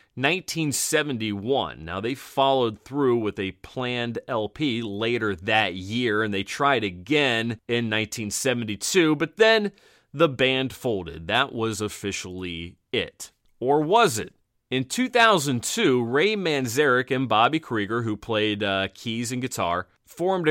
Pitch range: 105-140 Hz